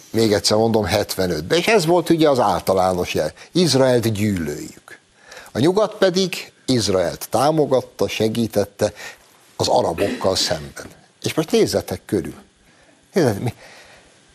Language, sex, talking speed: Hungarian, male, 115 wpm